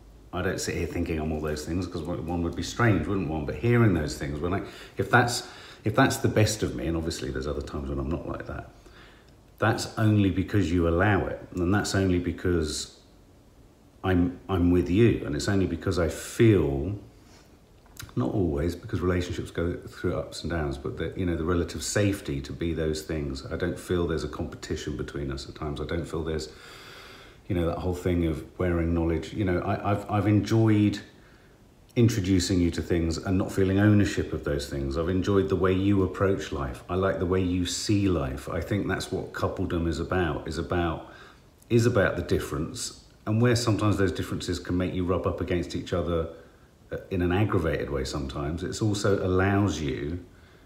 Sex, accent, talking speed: male, British, 200 wpm